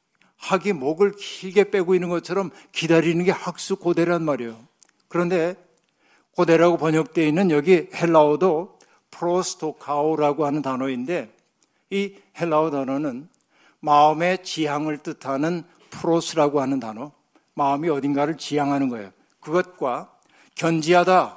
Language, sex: Korean, male